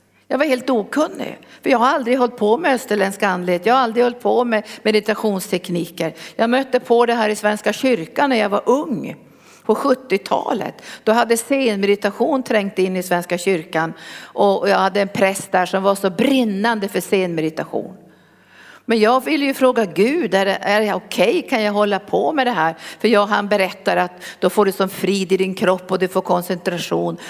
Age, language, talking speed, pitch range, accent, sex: 50-69, Swedish, 195 wpm, 185-240 Hz, native, female